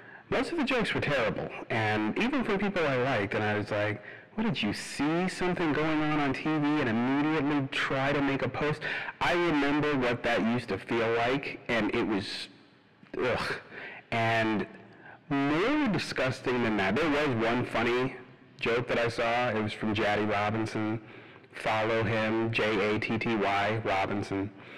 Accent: American